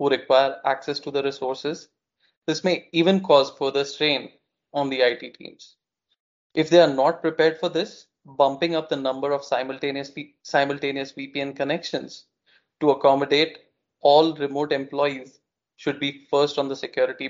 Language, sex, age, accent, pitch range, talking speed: English, male, 20-39, Indian, 135-160 Hz, 150 wpm